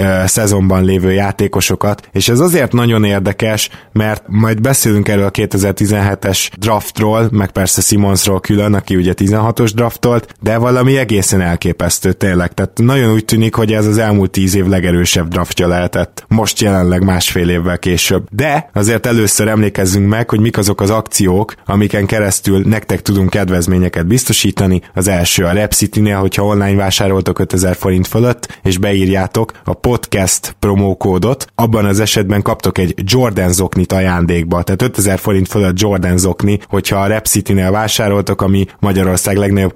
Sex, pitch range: male, 95-110 Hz